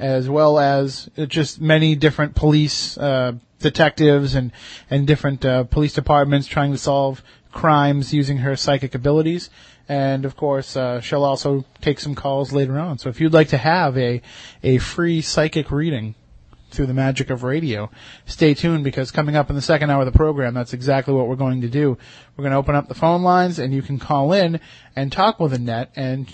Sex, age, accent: male, 30-49, American